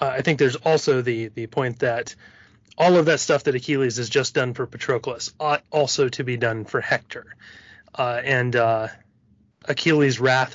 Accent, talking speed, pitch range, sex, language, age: American, 180 wpm, 115-135 Hz, male, English, 30-49